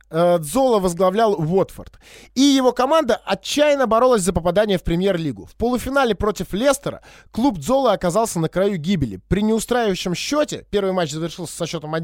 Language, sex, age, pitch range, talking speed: Russian, male, 20-39, 185-265 Hz, 150 wpm